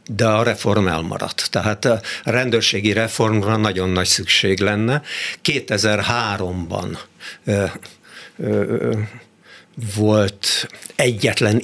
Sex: male